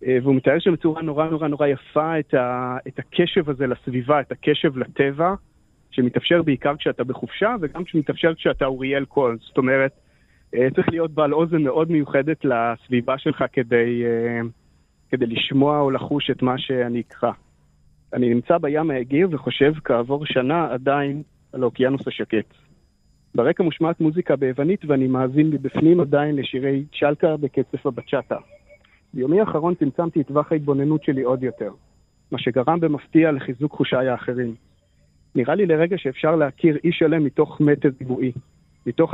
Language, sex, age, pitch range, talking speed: Hebrew, male, 30-49, 125-160 Hz, 145 wpm